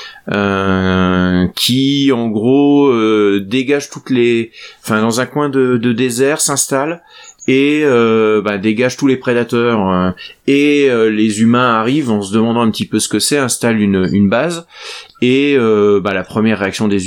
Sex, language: male, French